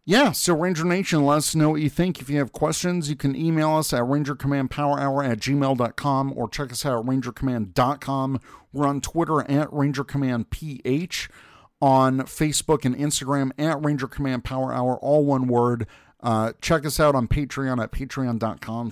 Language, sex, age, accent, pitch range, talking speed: English, male, 50-69, American, 120-145 Hz, 160 wpm